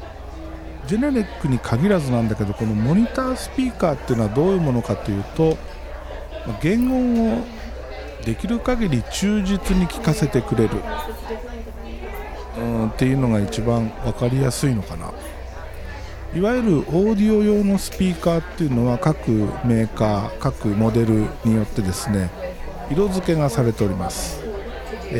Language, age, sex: Japanese, 50-69, male